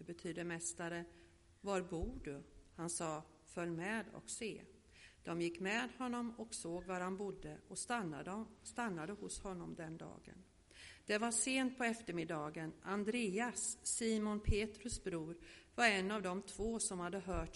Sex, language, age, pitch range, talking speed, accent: female, Swedish, 50-69, 170-215 Hz, 155 wpm, native